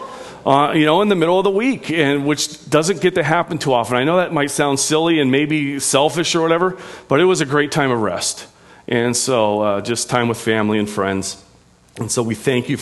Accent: American